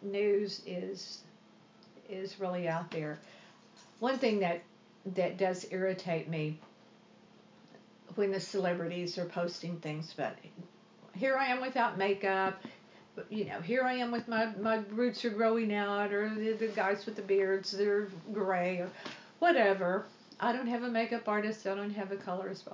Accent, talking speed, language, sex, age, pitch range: American, 155 wpm, English, female, 50-69, 180-220 Hz